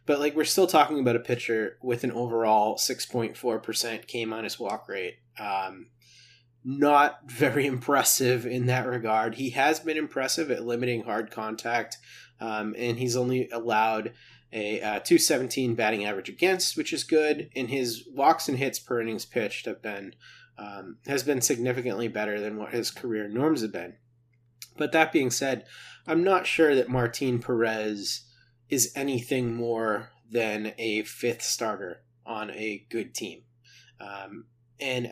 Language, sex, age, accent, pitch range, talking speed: English, male, 20-39, American, 115-145 Hz, 160 wpm